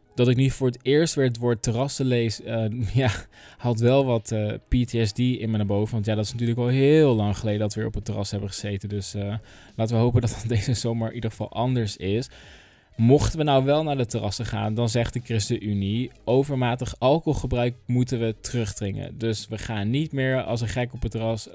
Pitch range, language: 110-130 Hz, Dutch